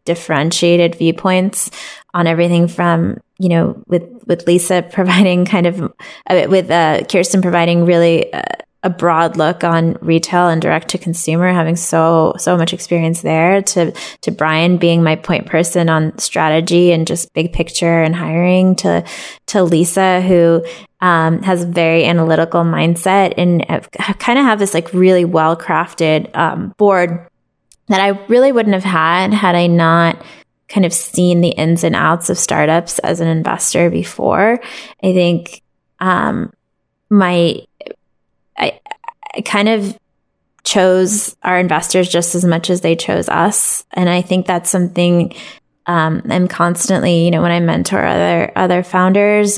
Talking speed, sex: 150 wpm, female